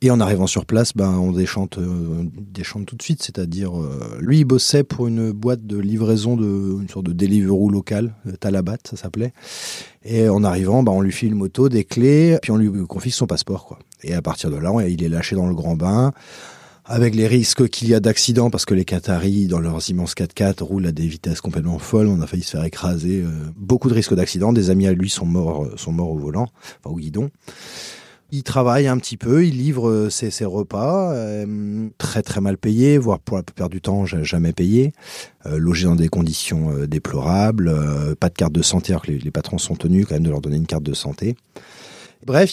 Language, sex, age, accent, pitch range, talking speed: French, male, 30-49, French, 90-115 Hz, 225 wpm